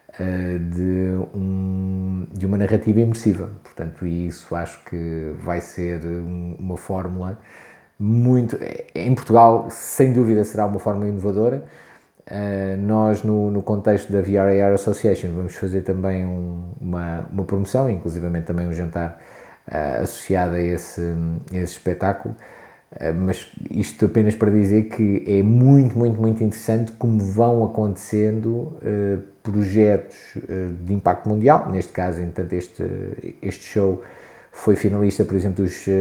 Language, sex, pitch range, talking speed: Portuguese, male, 90-105 Hz, 120 wpm